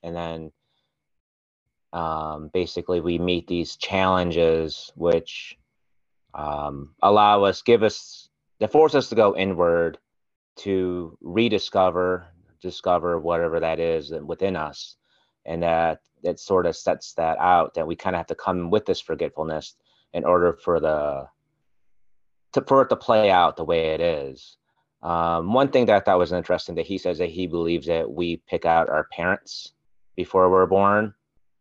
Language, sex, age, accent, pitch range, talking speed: English, male, 30-49, American, 80-100 Hz, 155 wpm